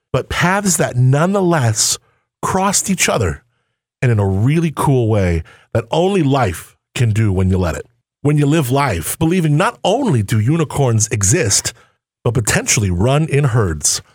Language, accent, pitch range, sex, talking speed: English, American, 115-160 Hz, male, 155 wpm